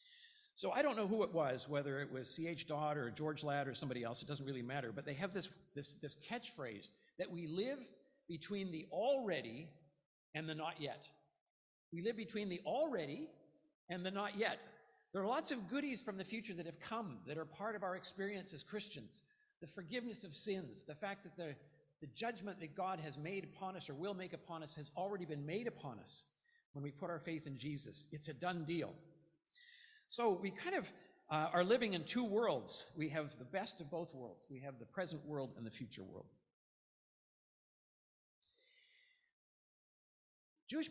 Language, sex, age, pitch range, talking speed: English, male, 50-69, 150-225 Hz, 190 wpm